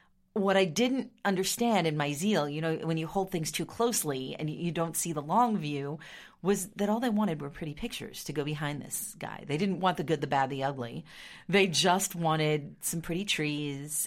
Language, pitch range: English, 150-205 Hz